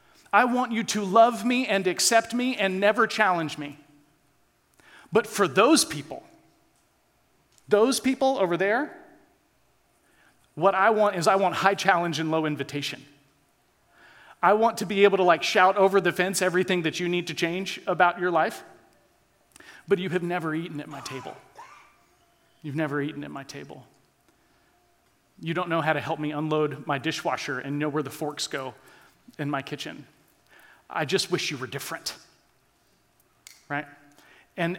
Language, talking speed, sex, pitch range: English, 160 wpm, male, 150-200 Hz